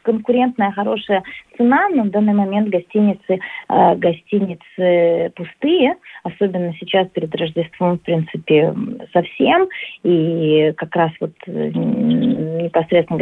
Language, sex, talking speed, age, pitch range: Russian, female, 100 wpm, 30-49, 170-225 Hz